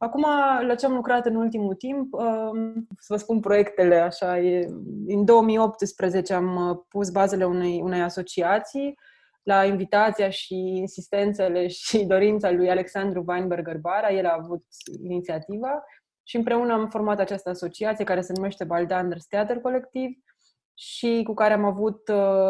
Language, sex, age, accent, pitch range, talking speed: Romanian, female, 20-39, native, 185-225 Hz, 140 wpm